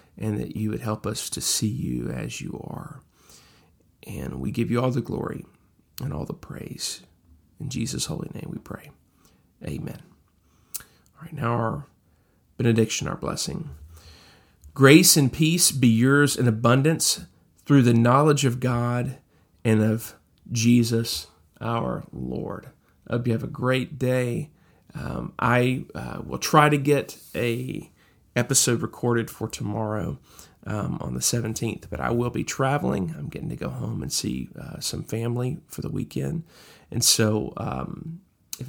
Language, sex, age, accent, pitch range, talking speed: English, male, 40-59, American, 110-130 Hz, 155 wpm